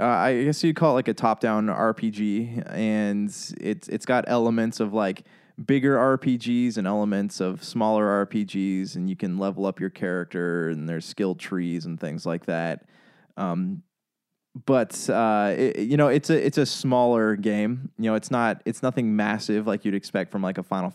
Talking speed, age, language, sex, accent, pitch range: 185 wpm, 20-39, English, male, American, 100-120 Hz